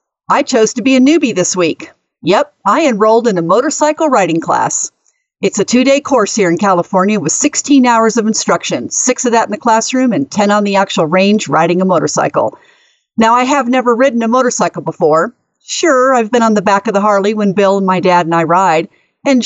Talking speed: 215 wpm